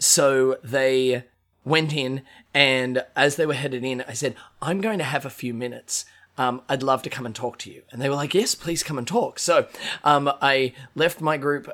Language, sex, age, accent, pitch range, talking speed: English, male, 20-39, Australian, 120-140 Hz, 220 wpm